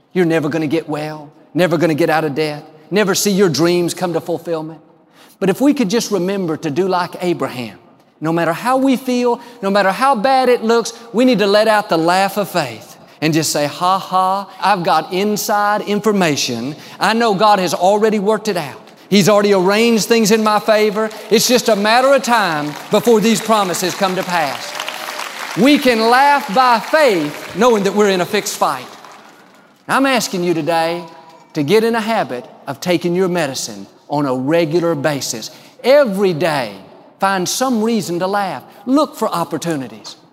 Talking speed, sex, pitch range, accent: 185 wpm, male, 160-220 Hz, American